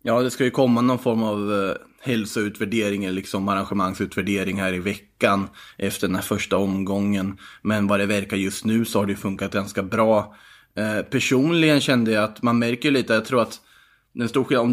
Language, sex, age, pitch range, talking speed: Swedish, male, 20-39, 100-125 Hz, 190 wpm